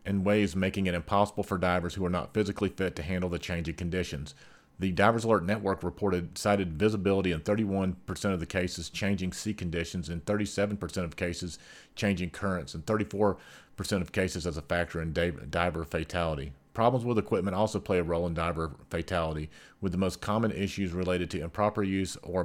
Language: English